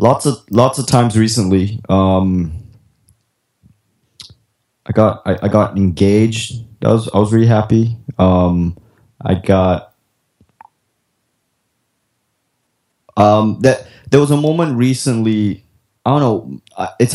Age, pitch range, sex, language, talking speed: 20-39, 95-115 Hz, male, English, 115 wpm